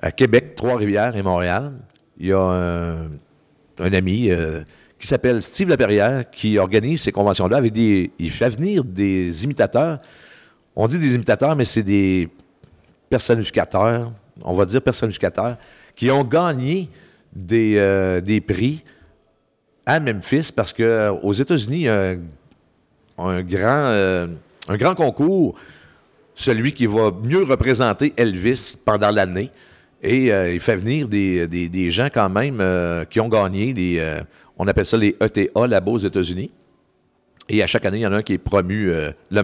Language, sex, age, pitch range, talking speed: French, male, 50-69, 95-130 Hz, 155 wpm